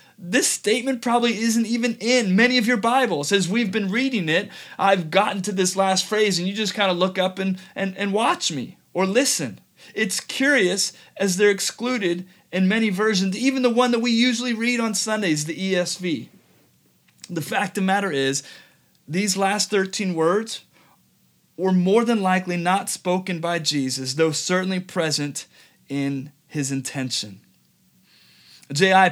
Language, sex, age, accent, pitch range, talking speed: English, male, 30-49, American, 165-205 Hz, 165 wpm